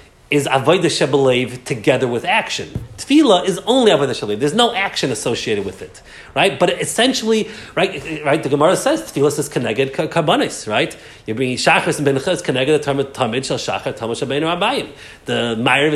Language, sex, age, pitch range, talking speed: English, male, 40-59, 135-180 Hz, 190 wpm